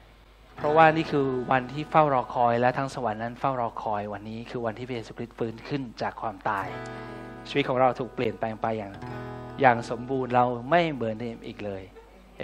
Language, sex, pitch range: Thai, male, 120-145 Hz